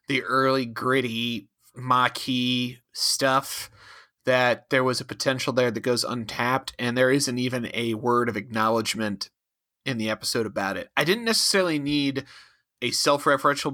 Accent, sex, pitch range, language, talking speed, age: American, male, 120-145 Hz, English, 145 wpm, 30-49